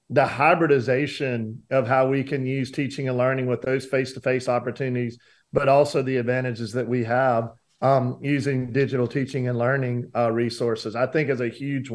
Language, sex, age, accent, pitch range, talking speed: English, male, 40-59, American, 125-145 Hz, 170 wpm